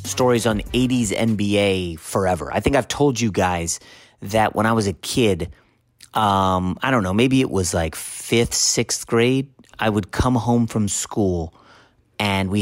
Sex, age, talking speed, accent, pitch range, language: male, 30-49, 170 wpm, American, 95-120 Hz, English